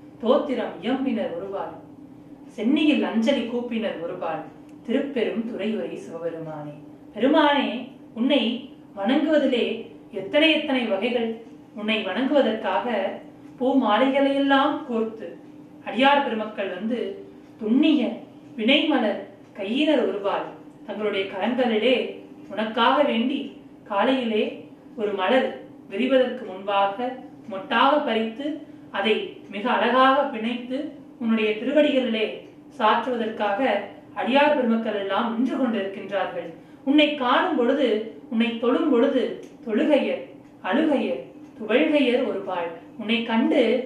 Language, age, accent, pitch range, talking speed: Tamil, 30-49, native, 220-280 Hz, 45 wpm